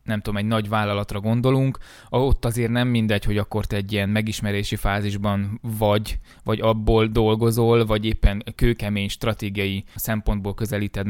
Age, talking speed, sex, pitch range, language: 20-39, 145 wpm, male, 100-115 Hz, Hungarian